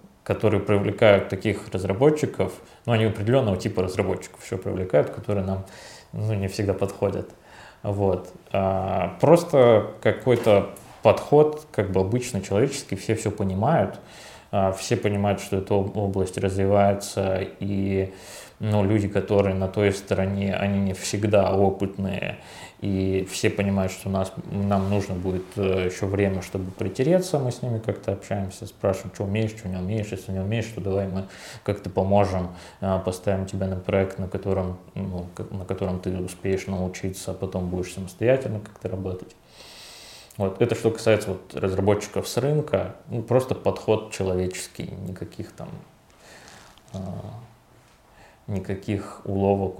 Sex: male